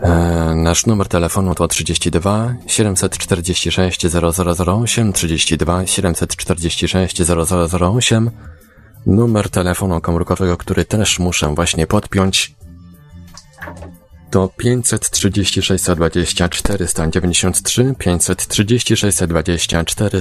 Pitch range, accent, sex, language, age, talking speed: 85-105 Hz, native, male, Polish, 30-49, 75 wpm